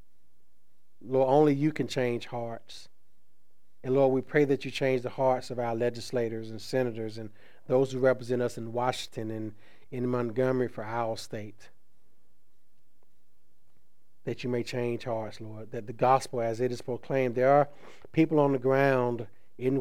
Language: English